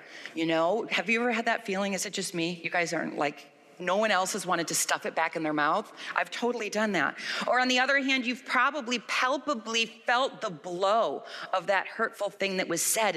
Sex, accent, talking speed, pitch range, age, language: female, American, 230 wpm, 165-225 Hz, 40-59, English